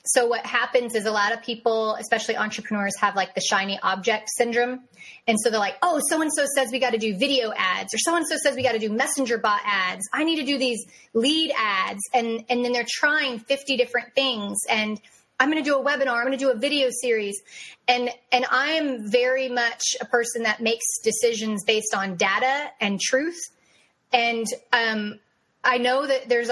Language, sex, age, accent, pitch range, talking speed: English, female, 30-49, American, 225-265 Hz, 200 wpm